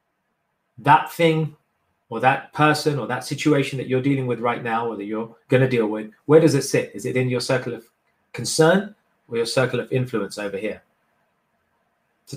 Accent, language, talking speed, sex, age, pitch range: British, English, 195 wpm, male, 30-49, 120-160 Hz